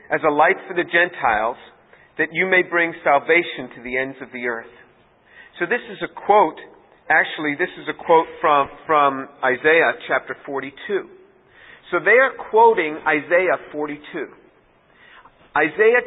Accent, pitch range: American, 150-190 Hz